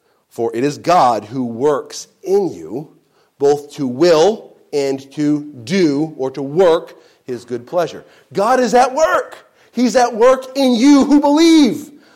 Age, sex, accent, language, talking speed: 40-59, male, American, English, 155 wpm